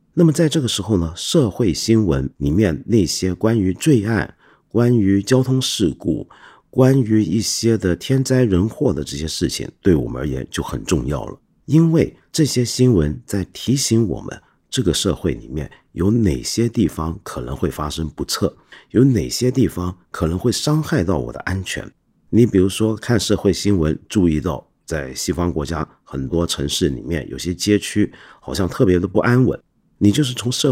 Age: 50-69